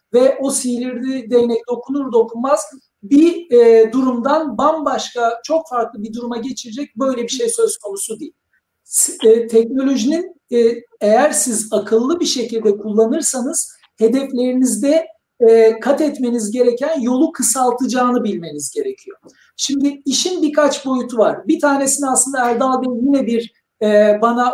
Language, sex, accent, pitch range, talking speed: Turkish, male, native, 225-290 Hz, 115 wpm